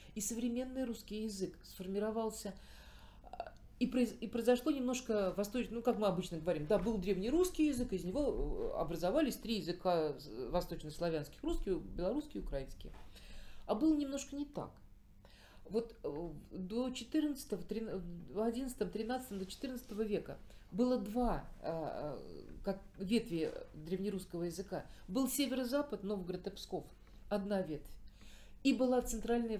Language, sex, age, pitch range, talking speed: Russian, female, 40-59, 185-245 Hz, 120 wpm